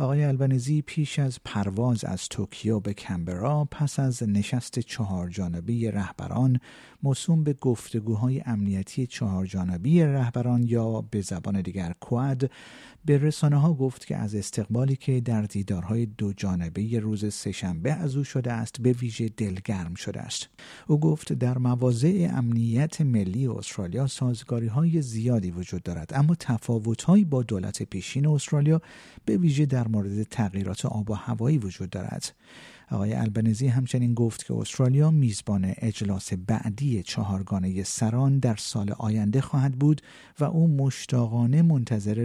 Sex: male